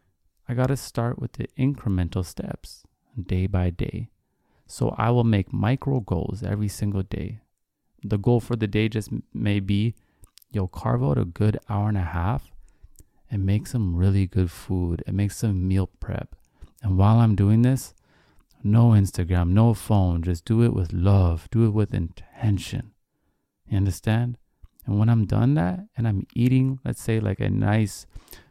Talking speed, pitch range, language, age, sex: 170 wpm, 95-115 Hz, English, 30-49, male